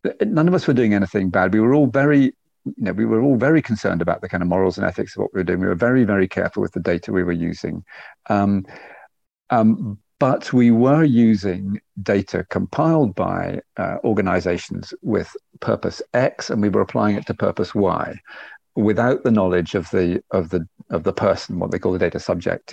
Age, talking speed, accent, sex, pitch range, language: 50-69, 210 wpm, British, male, 95-120 Hz, English